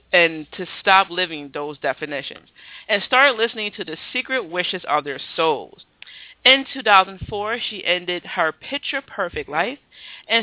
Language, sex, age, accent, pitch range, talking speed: English, female, 40-59, American, 160-210 Hz, 140 wpm